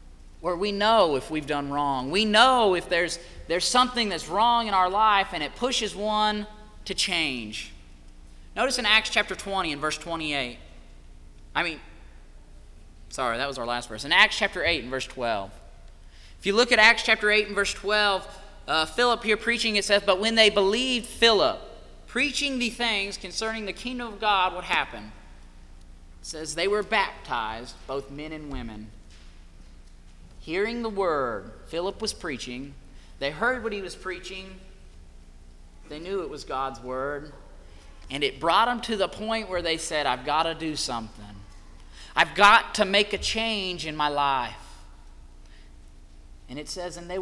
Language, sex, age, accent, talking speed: English, male, 30-49, American, 170 wpm